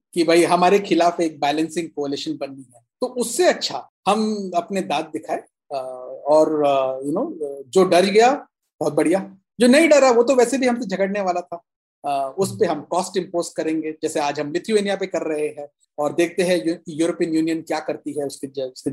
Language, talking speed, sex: Hindi, 195 wpm, male